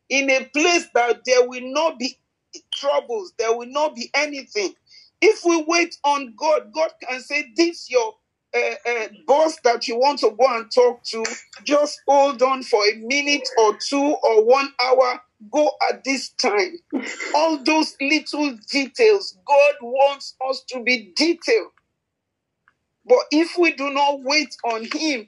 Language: English